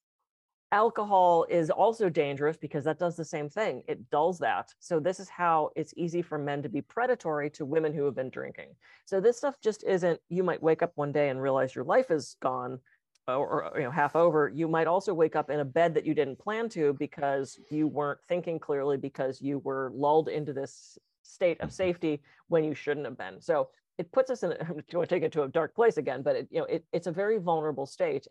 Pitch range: 145-180 Hz